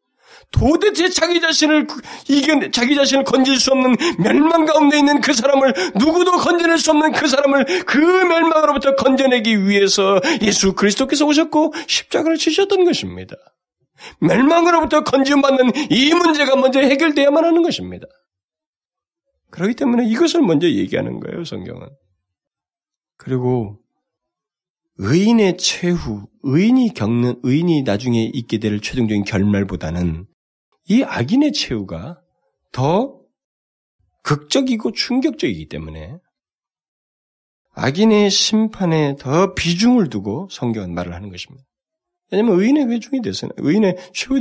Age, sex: 40-59, male